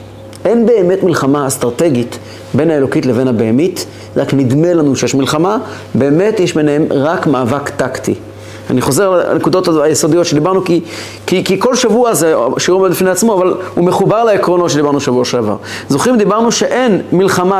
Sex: male